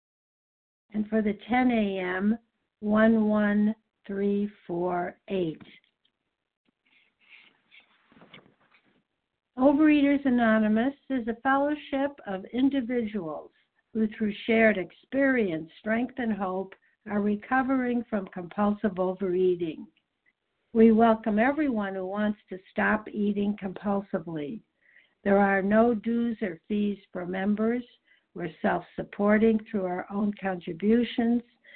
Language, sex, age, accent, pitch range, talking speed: English, female, 60-79, American, 195-235 Hz, 90 wpm